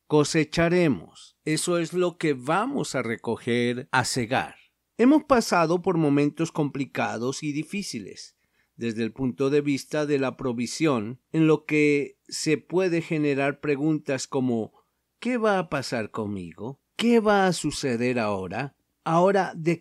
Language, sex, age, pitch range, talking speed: Spanish, male, 50-69, 130-170 Hz, 135 wpm